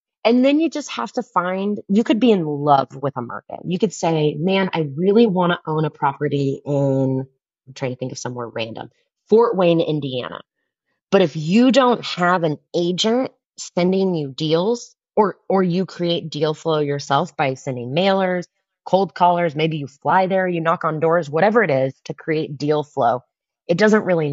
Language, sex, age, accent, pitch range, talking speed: English, female, 20-39, American, 135-185 Hz, 190 wpm